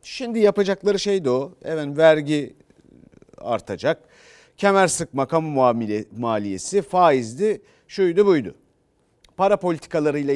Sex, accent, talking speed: male, native, 95 wpm